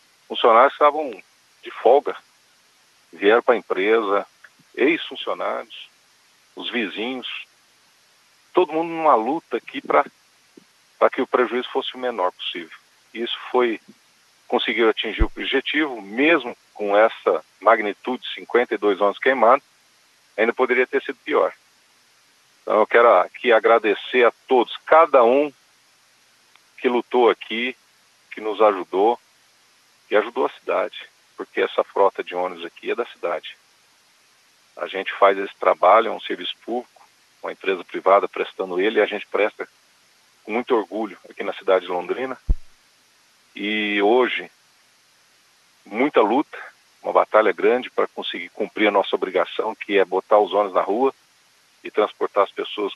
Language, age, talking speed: Portuguese, 50-69, 135 wpm